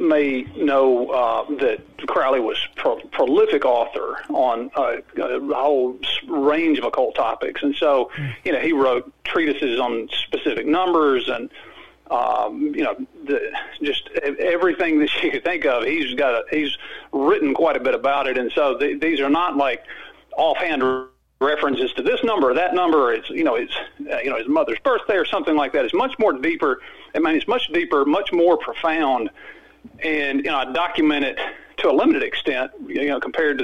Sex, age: male, 50-69